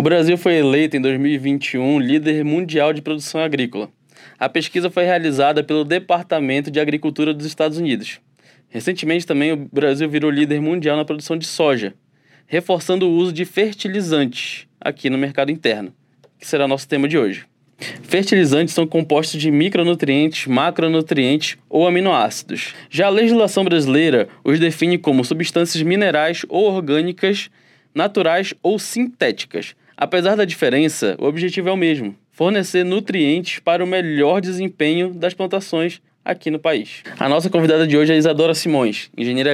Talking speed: 150 wpm